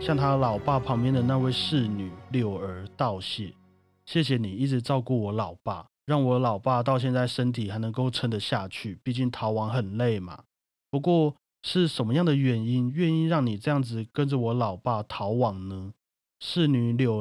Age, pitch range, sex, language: 30-49, 115-145 Hz, male, Chinese